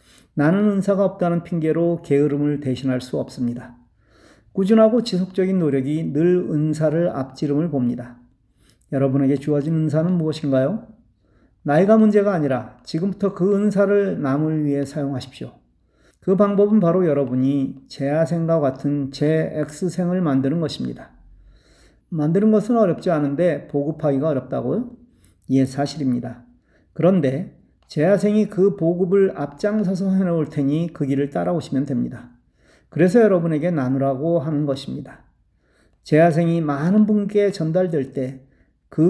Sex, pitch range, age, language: male, 135-185 Hz, 40-59, Korean